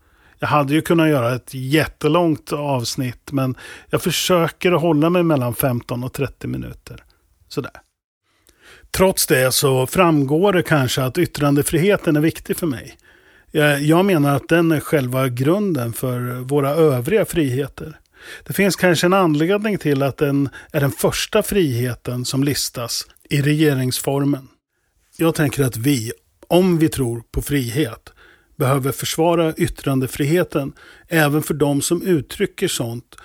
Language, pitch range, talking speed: Swedish, 130-165 Hz, 135 wpm